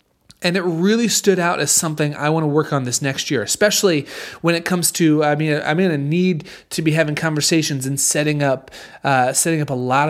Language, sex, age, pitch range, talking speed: English, male, 30-49, 130-165 Hz, 225 wpm